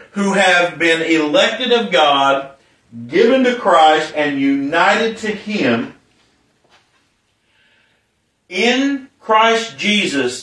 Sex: male